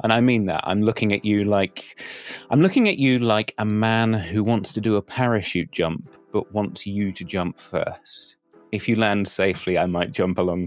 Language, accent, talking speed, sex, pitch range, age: English, British, 210 wpm, male, 95-125 Hz, 30-49